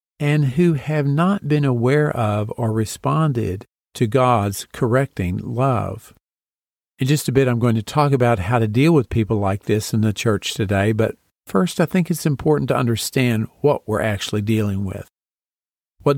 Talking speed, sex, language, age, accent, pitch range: 175 wpm, male, English, 50-69, American, 110-145 Hz